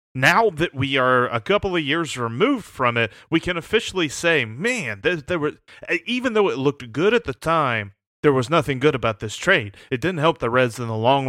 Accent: American